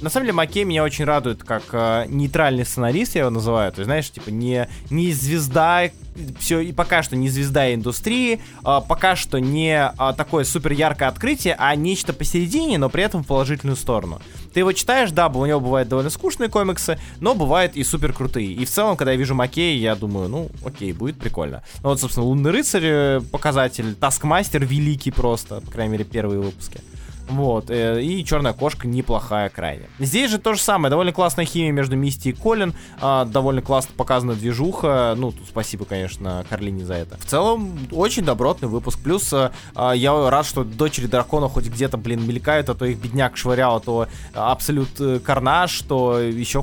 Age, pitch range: 20-39, 115-155 Hz